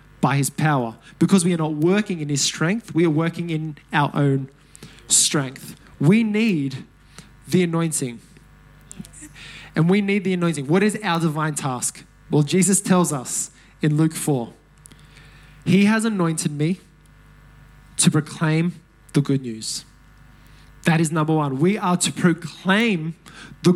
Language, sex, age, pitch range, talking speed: English, male, 20-39, 160-205 Hz, 145 wpm